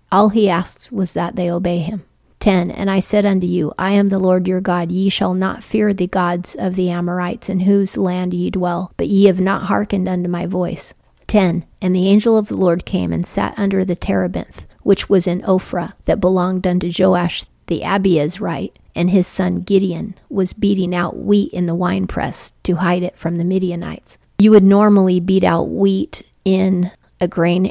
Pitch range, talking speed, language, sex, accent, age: 175-195 Hz, 200 wpm, English, female, American, 40-59